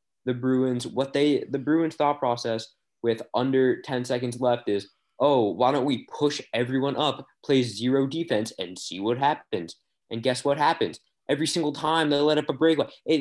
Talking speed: 185 wpm